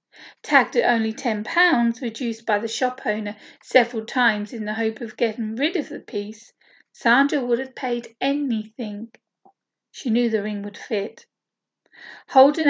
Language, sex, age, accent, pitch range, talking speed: English, female, 40-59, British, 225-275 Hz, 150 wpm